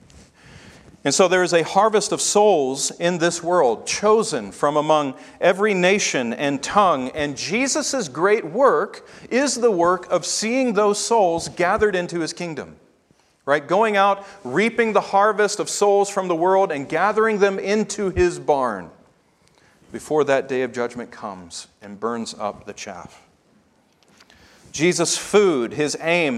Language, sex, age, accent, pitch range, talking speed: English, male, 40-59, American, 150-205 Hz, 150 wpm